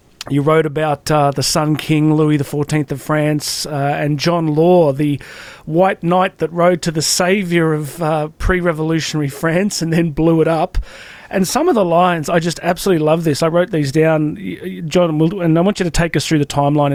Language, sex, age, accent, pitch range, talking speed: English, male, 30-49, Australian, 145-175 Hz, 205 wpm